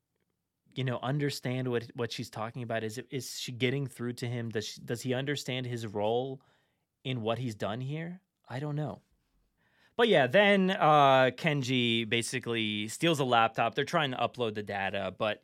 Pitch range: 105-135 Hz